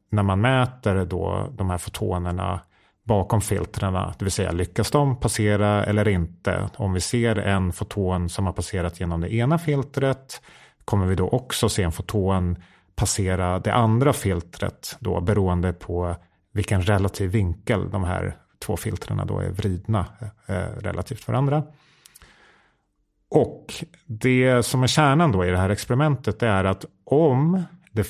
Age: 30-49